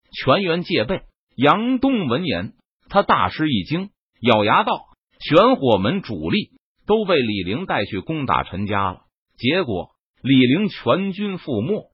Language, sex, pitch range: Chinese, male, 105-170 Hz